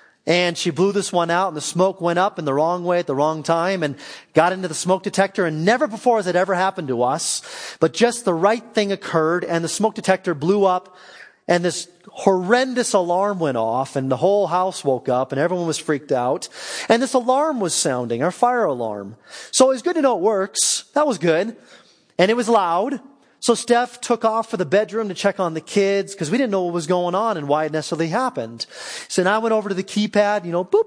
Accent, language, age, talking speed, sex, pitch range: American, English, 30-49, 235 wpm, male, 155-205 Hz